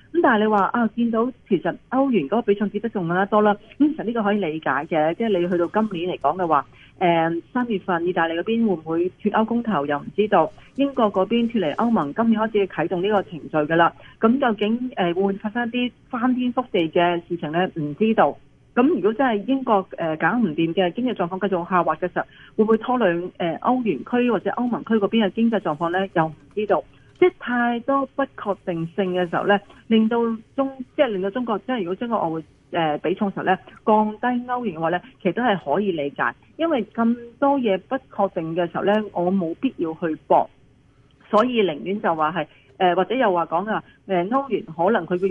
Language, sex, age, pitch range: Chinese, female, 30-49, 170-225 Hz